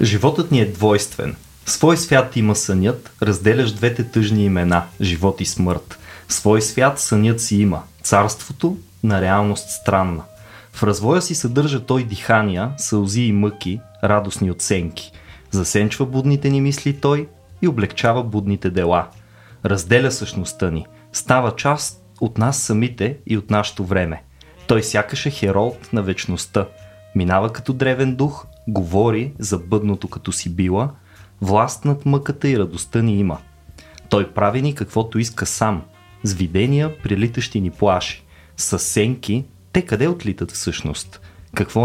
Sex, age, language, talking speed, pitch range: male, 20-39, Bulgarian, 140 wpm, 95-120 Hz